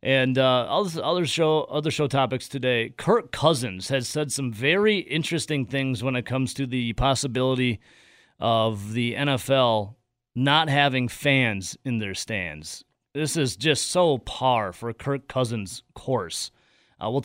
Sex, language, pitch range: male, English, 115-140 Hz